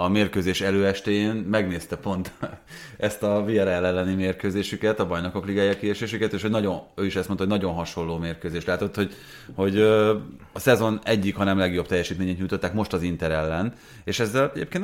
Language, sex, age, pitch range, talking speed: Hungarian, male, 30-49, 90-110 Hz, 175 wpm